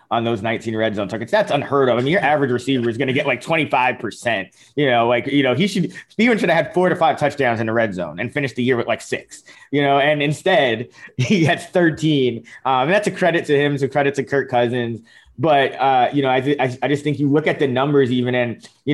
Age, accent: 20-39, American